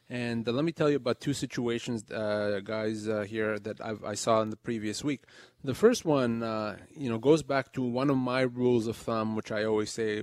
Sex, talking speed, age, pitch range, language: male, 235 wpm, 30-49, 110-145 Hz, English